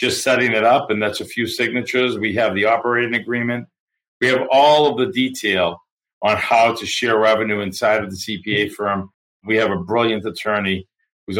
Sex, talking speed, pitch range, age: male, 190 wpm, 100-130 Hz, 40-59